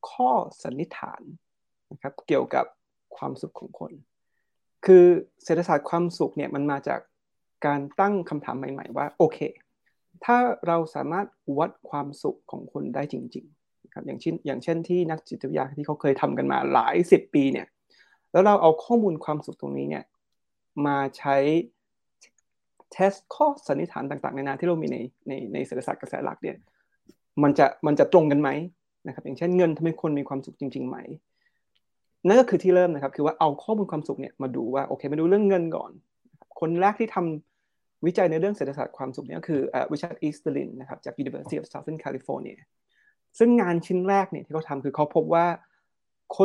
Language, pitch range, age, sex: Thai, 145-185 Hz, 20-39, male